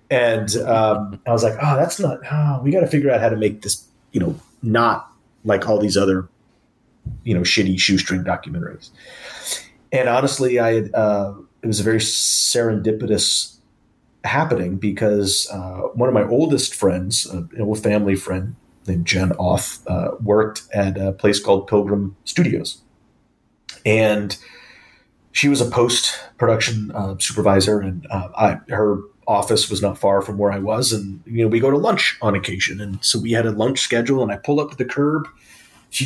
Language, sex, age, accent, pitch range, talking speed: English, male, 30-49, American, 105-125 Hz, 175 wpm